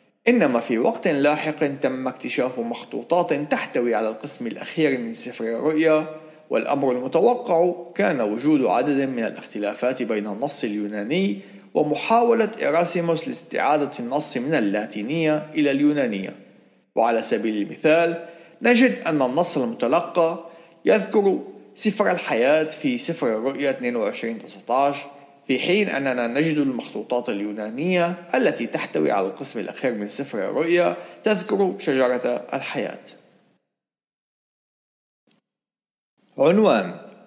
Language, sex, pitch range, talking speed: Arabic, male, 125-175 Hz, 100 wpm